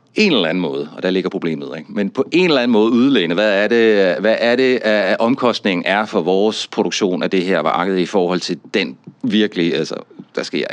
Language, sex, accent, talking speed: Danish, male, native, 205 wpm